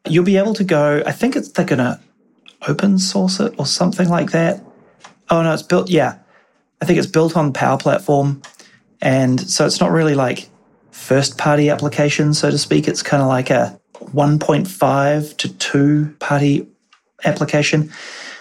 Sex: male